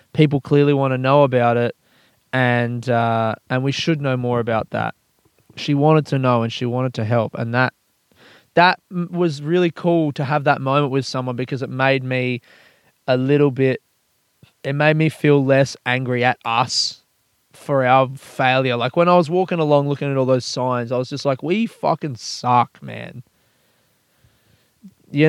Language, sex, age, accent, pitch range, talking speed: English, male, 20-39, Australian, 120-145 Hz, 180 wpm